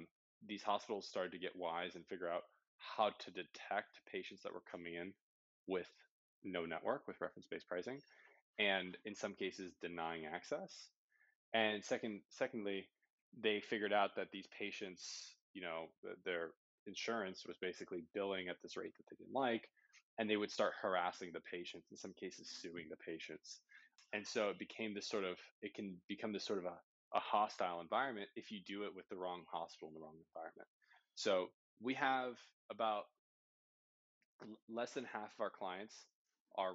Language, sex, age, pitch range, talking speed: English, male, 20-39, 90-110 Hz, 170 wpm